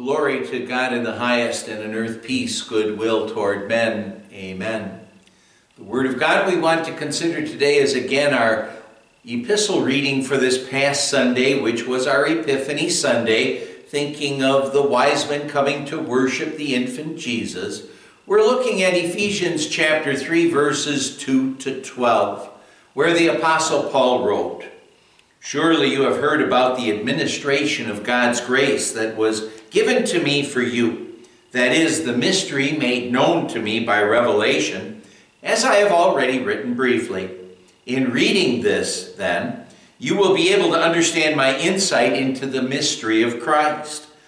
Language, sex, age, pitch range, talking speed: English, male, 60-79, 120-155 Hz, 155 wpm